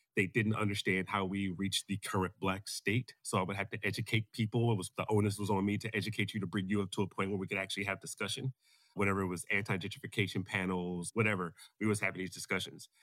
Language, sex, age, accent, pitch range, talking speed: English, male, 30-49, American, 100-115 Hz, 235 wpm